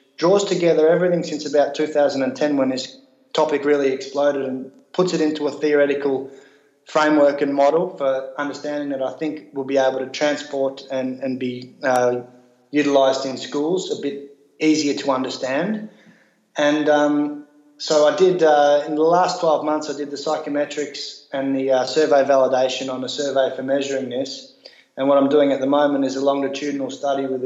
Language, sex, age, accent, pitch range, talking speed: English, male, 20-39, Australian, 130-150 Hz, 175 wpm